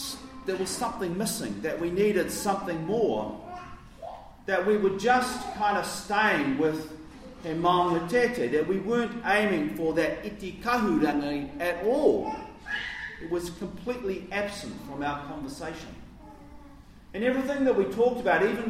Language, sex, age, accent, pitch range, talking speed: English, male, 40-59, Australian, 160-240 Hz, 140 wpm